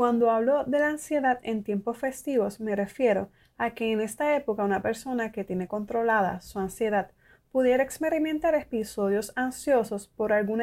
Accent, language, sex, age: American, Spanish, female, 20-39